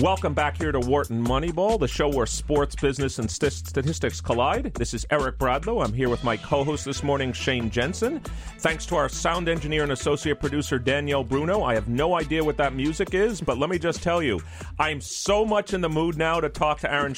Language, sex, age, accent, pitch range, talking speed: English, male, 40-59, American, 125-160 Hz, 215 wpm